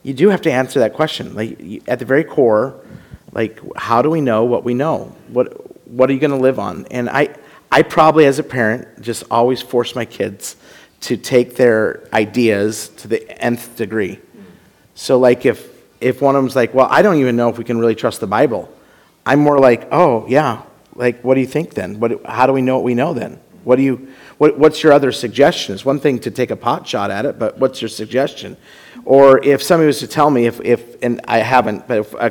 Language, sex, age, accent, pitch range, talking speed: English, male, 40-59, American, 115-140 Hz, 230 wpm